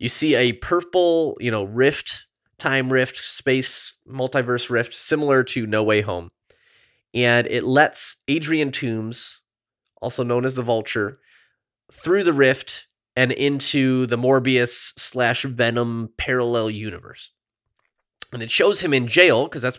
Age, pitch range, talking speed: 30-49, 110-135 Hz, 140 wpm